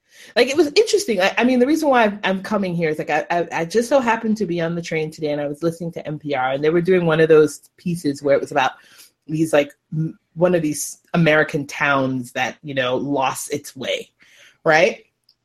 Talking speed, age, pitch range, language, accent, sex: 235 wpm, 30-49, 150-215 Hz, English, American, female